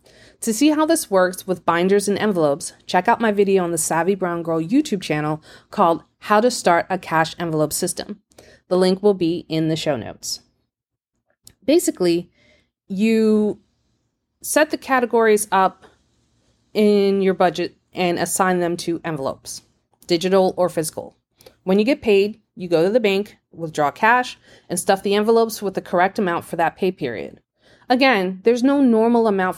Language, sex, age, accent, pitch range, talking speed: English, female, 20-39, American, 165-215 Hz, 165 wpm